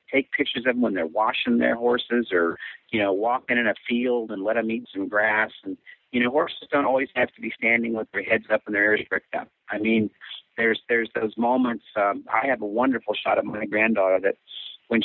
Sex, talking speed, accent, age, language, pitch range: male, 235 wpm, American, 50-69, English, 110-130 Hz